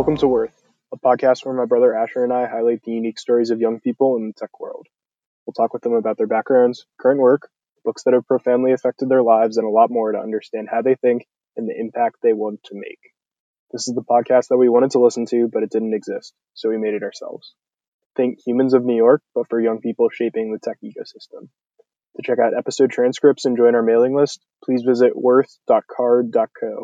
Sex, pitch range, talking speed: male, 115-130 Hz, 220 wpm